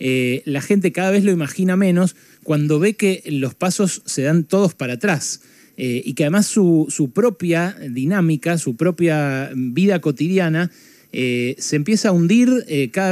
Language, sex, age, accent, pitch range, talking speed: Spanish, male, 20-39, Argentinian, 130-185 Hz, 170 wpm